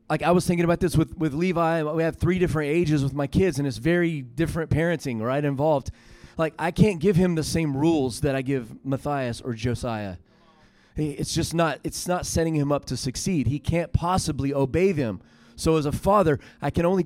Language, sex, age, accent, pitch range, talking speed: English, male, 30-49, American, 130-170 Hz, 210 wpm